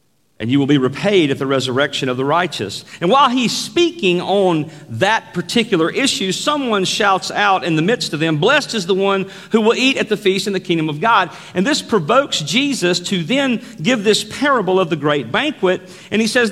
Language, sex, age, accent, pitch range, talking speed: English, male, 40-59, American, 155-215 Hz, 210 wpm